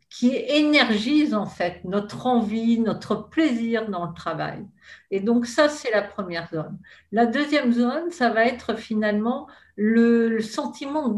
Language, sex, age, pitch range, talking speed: French, female, 50-69, 200-250 Hz, 150 wpm